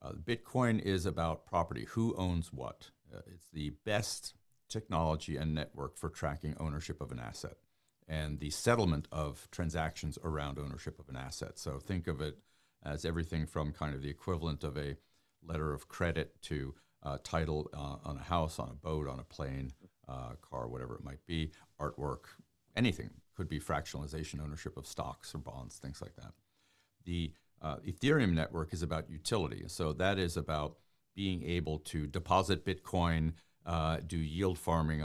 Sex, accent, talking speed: male, American, 170 wpm